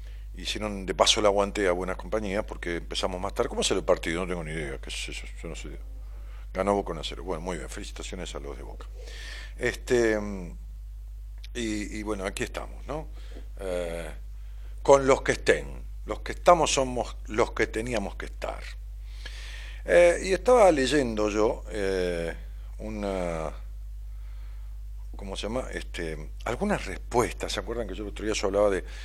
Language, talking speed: Spanish, 165 wpm